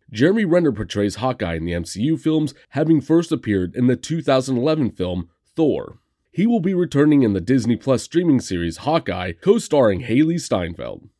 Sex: male